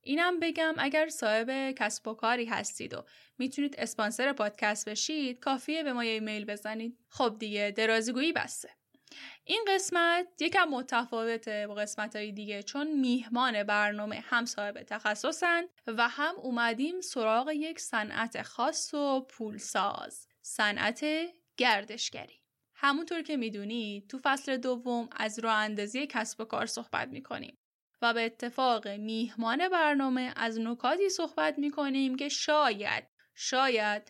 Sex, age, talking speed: female, 10-29, 125 wpm